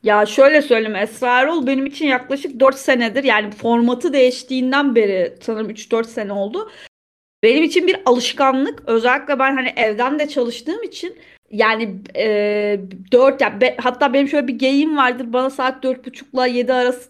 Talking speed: 160 wpm